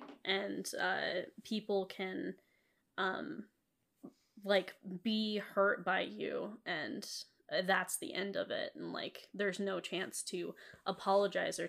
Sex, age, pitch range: female, 10-29, 185-205 Hz